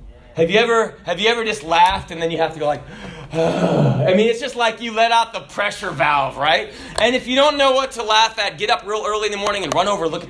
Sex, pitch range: male, 175-255 Hz